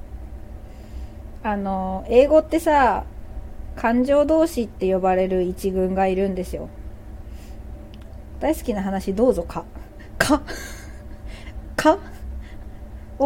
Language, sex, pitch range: Japanese, female, 180-275 Hz